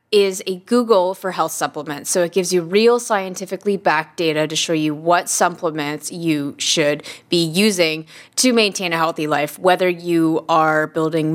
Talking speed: 170 wpm